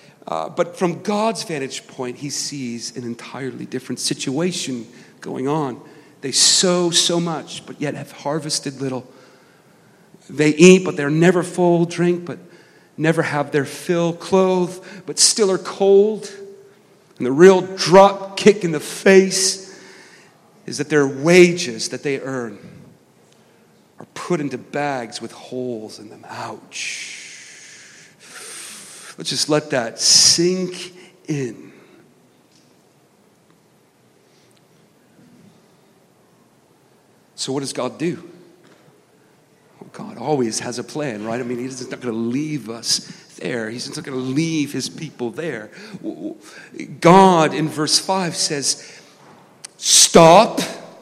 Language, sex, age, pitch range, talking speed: English, male, 40-59, 135-185 Hz, 125 wpm